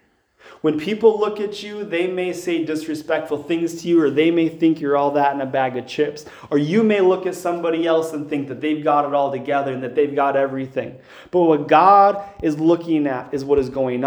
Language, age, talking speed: English, 30-49, 230 wpm